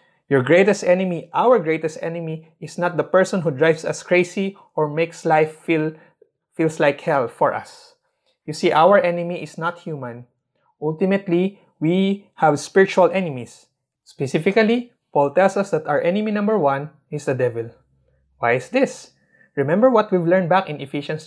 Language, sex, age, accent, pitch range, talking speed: English, male, 20-39, Filipino, 140-185 Hz, 160 wpm